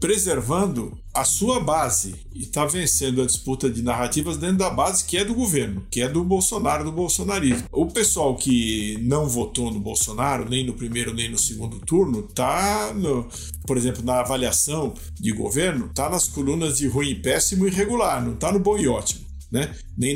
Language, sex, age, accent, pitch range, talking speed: Portuguese, male, 50-69, Brazilian, 120-175 Hz, 185 wpm